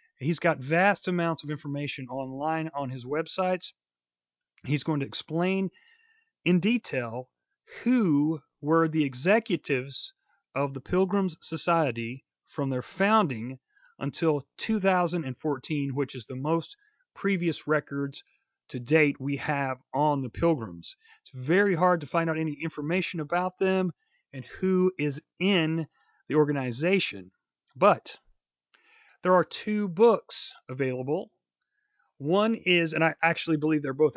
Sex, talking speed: male, 125 wpm